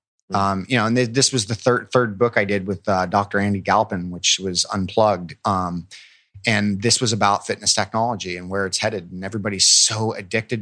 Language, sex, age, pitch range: English, male, 30-49, 100-120 Hz